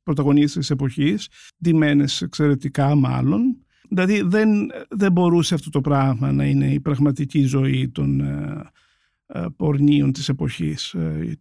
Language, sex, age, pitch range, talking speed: Greek, male, 50-69, 145-200 Hz, 130 wpm